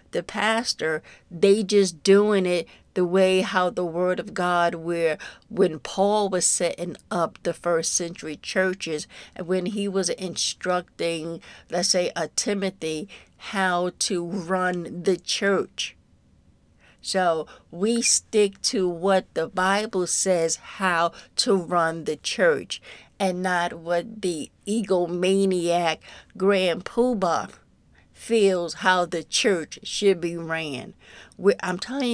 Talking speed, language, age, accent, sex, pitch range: 125 wpm, English, 50-69, American, female, 175-195 Hz